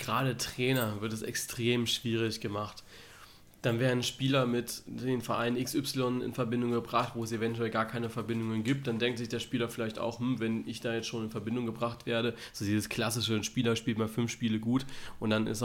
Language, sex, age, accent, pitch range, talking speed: German, male, 20-39, German, 110-120 Hz, 205 wpm